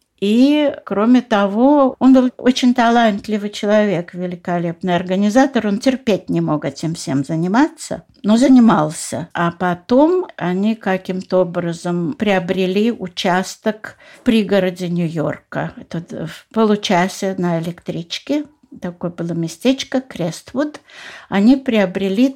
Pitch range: 180-250 Hz